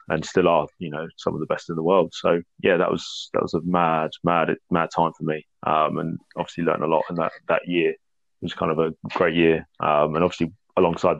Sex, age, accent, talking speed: male, 20-39, British, 245 wpm